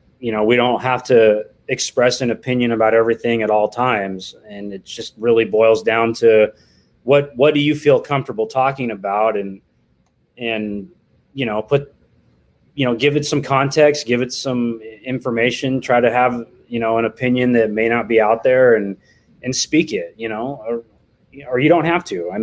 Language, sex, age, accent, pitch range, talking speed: English, male, 20-39, American, 110-135 Hz, 185 wpm